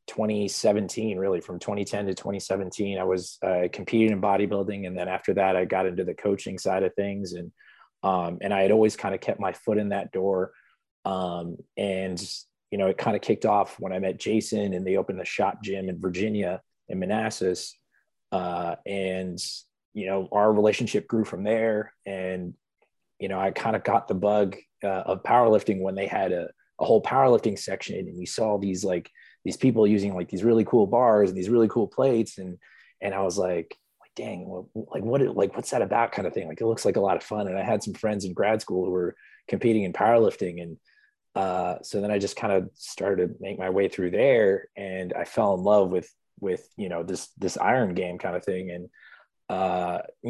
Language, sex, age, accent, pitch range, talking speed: English, male, 20-39, American, 90-105 Hz, 210 wpm